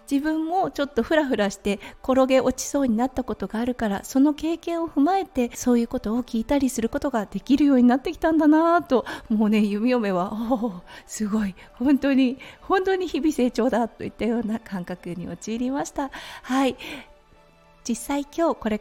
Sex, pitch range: female, 220-285 Hz